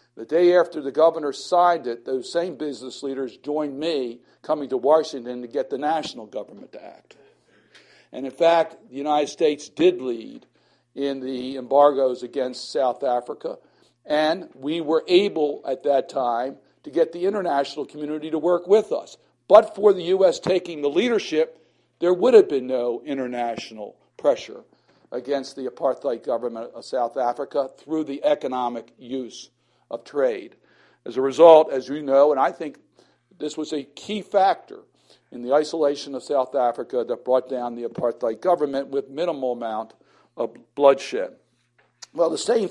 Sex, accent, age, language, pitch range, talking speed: male, American, 60-79, English, 130-165 Hz, 160 wpm